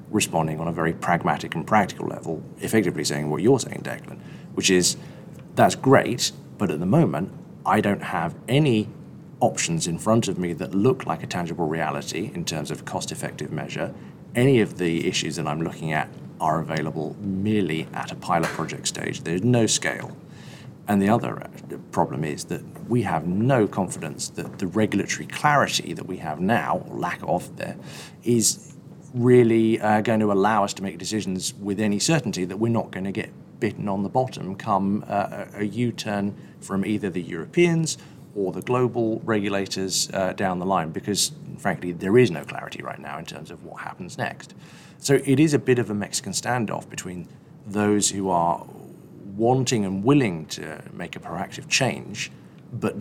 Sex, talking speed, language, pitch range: male, 180 wpm, English, 95-120 Hz